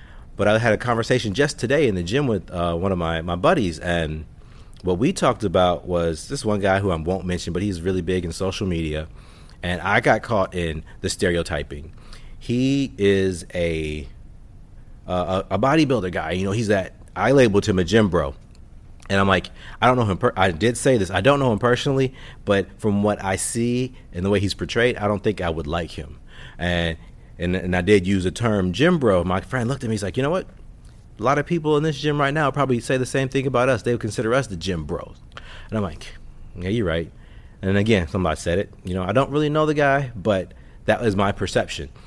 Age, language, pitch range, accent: 30-49, English, 90-120 Hz, American